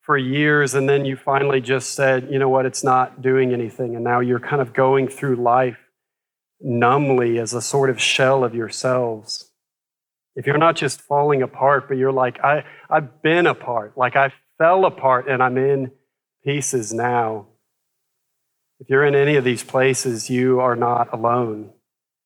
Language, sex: English, male